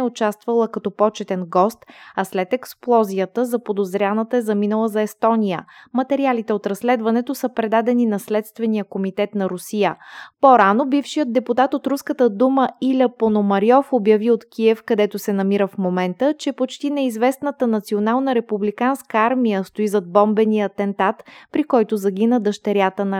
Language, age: Bulgarian, 20-39